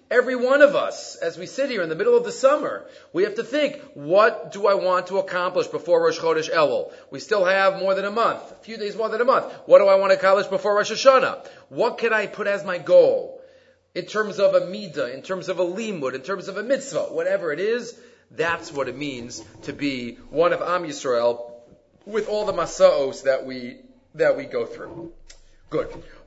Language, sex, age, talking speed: English, male, 30-49, 220 wpm